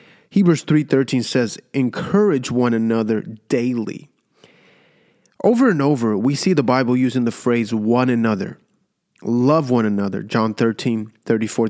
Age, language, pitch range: 30-49, English, 115-170 Hz